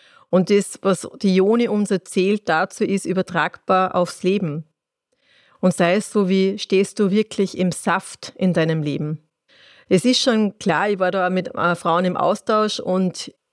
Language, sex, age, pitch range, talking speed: German, female, 30-49, 175-195 Hz, 165 wpm